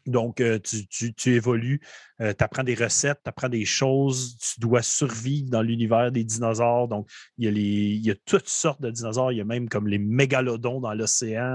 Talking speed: 220 wpm